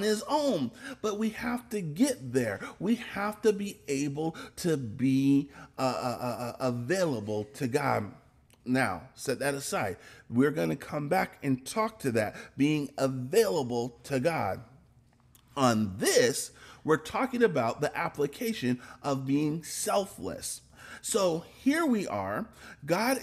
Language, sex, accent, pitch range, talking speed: English, male, American, 115-165 Hz, 135 wpm